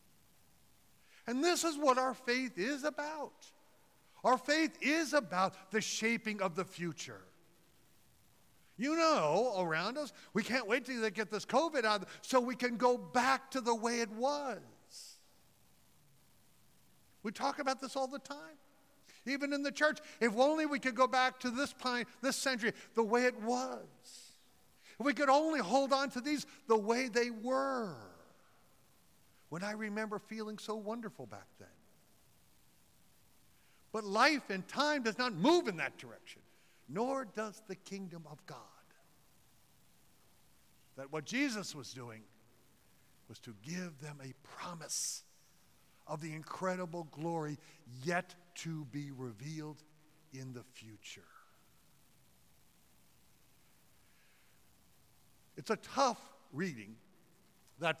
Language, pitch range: English, 160-265 Hz